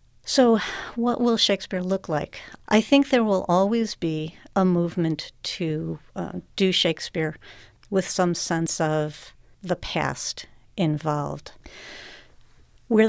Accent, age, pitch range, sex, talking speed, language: American, 50-69, 160-195 Hz, female, 120 wpm, English